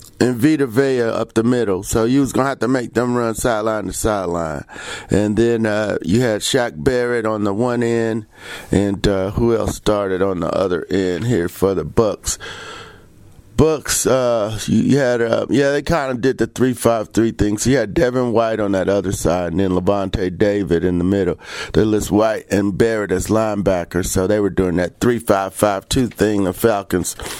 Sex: male